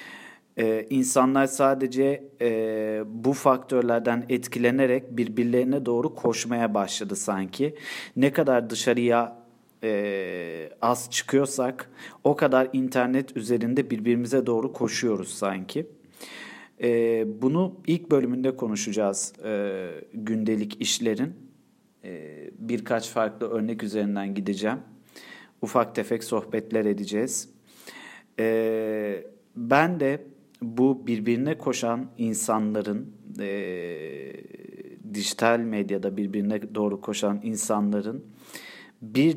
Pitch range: 105-130 Hz